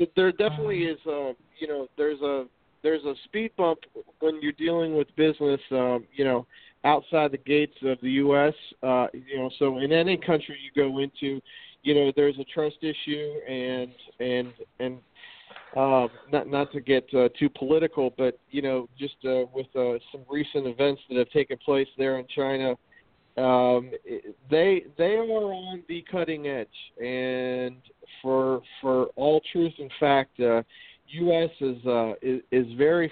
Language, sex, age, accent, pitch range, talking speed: English, male, 40-59, American, 130-150 Hz, 170 wpm